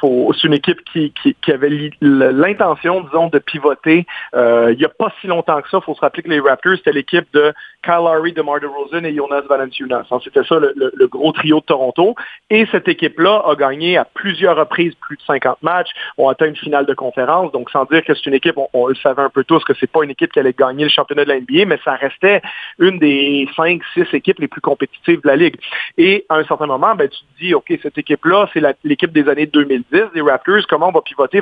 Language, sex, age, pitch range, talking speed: French, male, 40-59, 145-170 Hz, 250 wpm